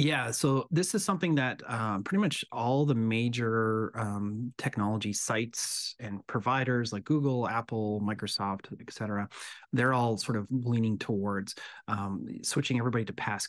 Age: 30-49